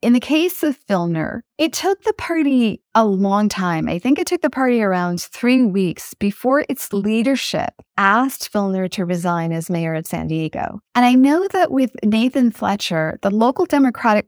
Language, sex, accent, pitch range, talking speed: English, female, American, 190-245 Hz, 180 wpm